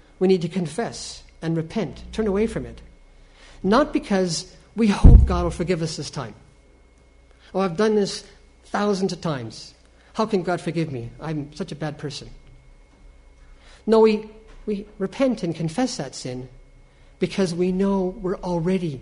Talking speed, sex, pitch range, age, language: 160 wpm, male, 135-190 Hz, 50-69, English